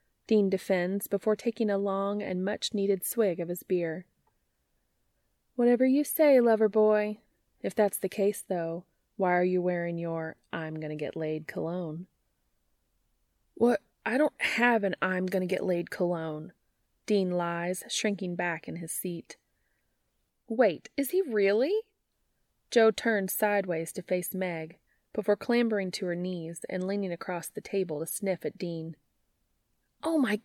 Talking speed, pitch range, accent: 135 wpm, 175-225 Hz, American